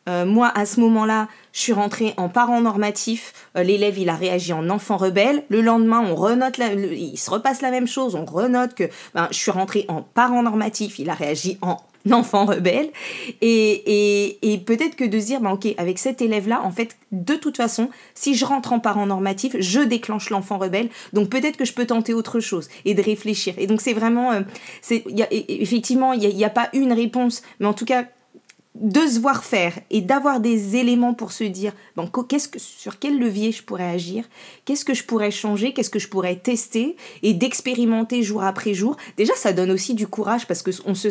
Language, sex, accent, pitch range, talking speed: French, female, French, 195-240 Hz, 220 wpm